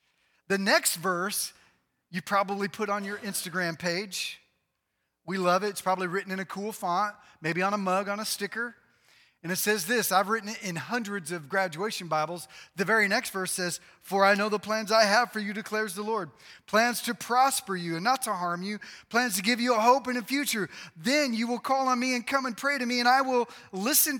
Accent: American